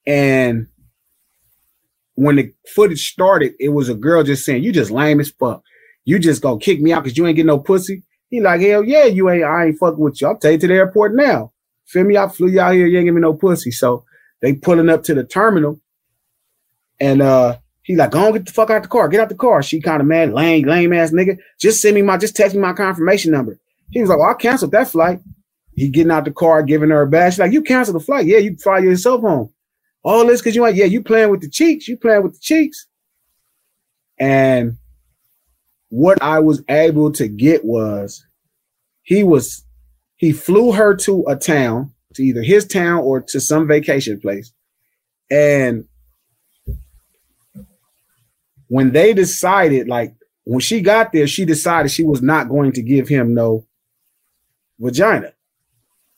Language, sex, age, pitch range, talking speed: English, male, 30-49, 135-195 Hz, 200 wpm